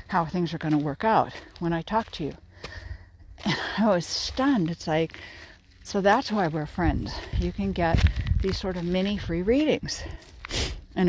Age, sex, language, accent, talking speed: 60-79, female, English, American, 175 wpm